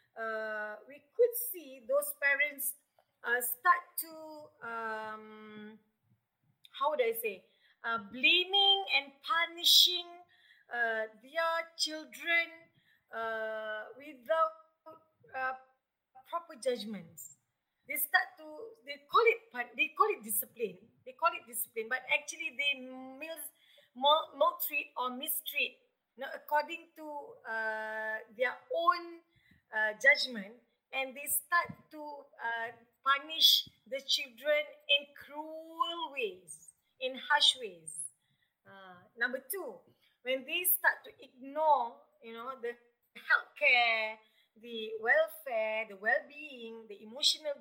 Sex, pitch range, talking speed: female, 235-325 Hz, 110 wpm